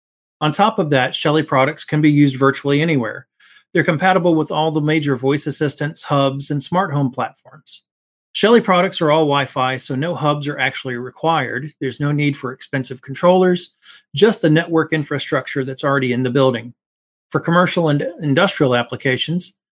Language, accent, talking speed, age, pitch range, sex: English, American, 170 wpm, 40-59, 135-175 Hz, male